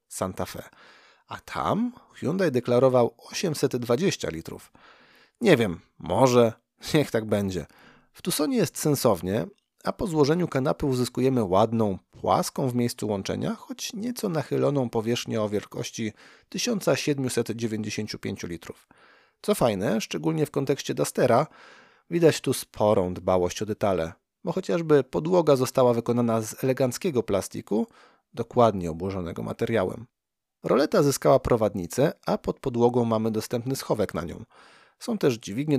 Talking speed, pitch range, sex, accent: 120 wpm, 110-155 Hz, male, native